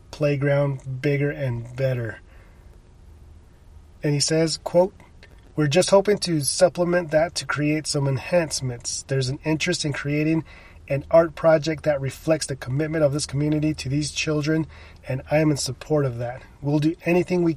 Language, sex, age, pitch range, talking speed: English, male, 30-49, 125-160 Hz, 160 wpm